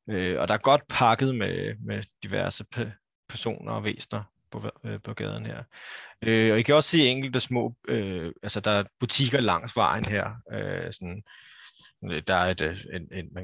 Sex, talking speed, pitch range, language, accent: male, 145 wpm, 100-120 Hz, Danish, native